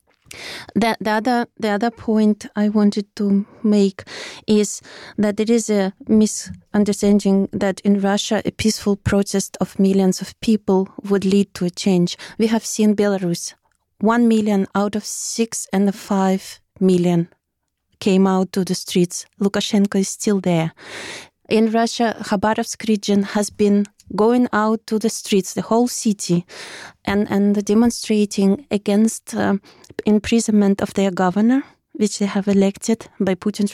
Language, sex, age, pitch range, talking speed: English, female, 20-39, 190-215 Hz, 145 wpm